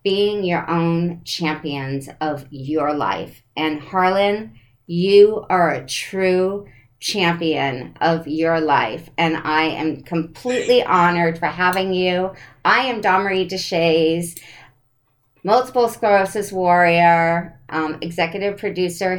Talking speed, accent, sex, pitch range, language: 110 wpm, American, female, 145-190 Hz, English